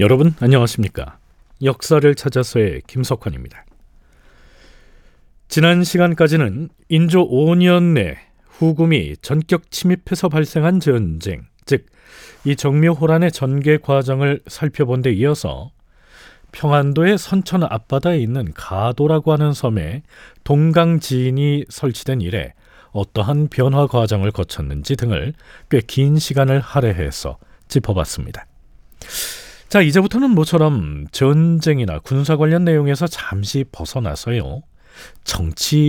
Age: 40-59